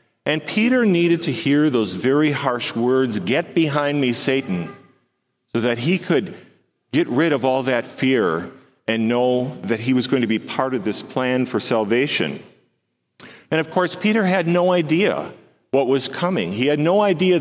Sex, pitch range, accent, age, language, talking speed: male, 110-150 Hz, American, 40-59, English, 175 wpm